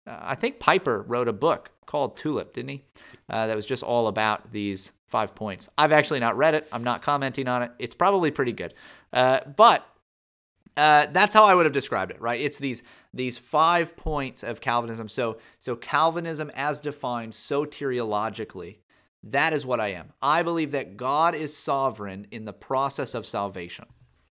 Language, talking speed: English, 180 wpm